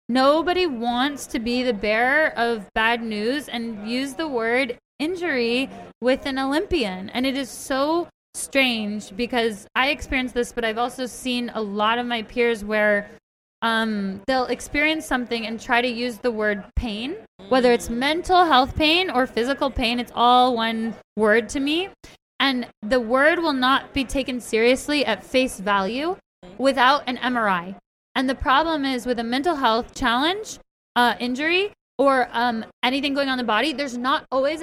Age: 20-39